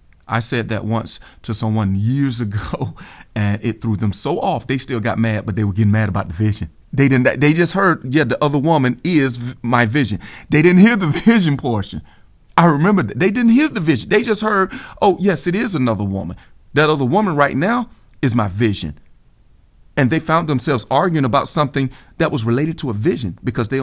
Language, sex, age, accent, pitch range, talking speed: English, male, 40-59, American, 110-145 Hz, 210 wpm